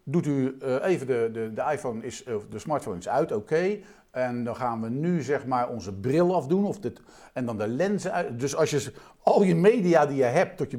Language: Dutch